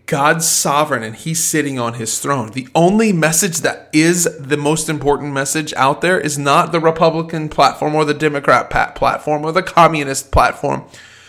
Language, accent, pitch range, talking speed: English, American, 110-150 Hz, 170 wpm